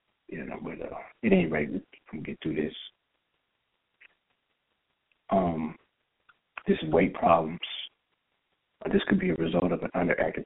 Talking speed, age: 145 wpm, 60-79